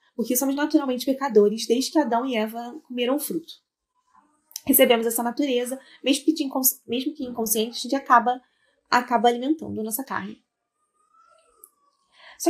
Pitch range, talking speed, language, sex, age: 230-295 Hz, 140 wpm, Portuguese, female, 20-39